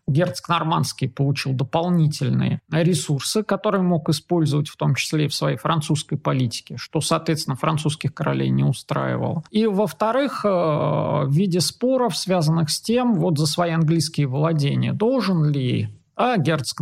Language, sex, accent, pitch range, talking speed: Russian, male, native, 150-200 Hz, 135 wpm